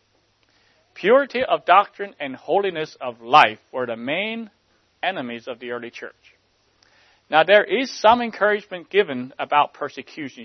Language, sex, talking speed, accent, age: English, male, 130 wpm, American, 40-59